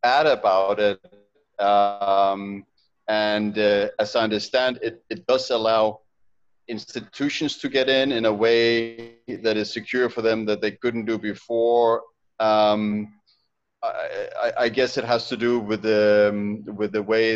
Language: English